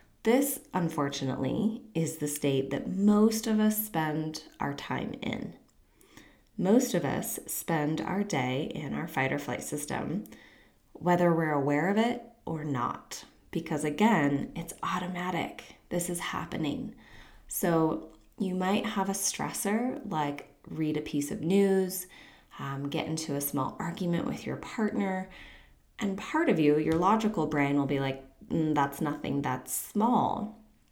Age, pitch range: 20-39, 145-200 Hz